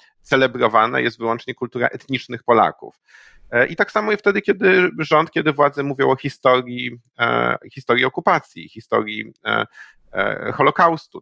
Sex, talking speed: male, 125 wpm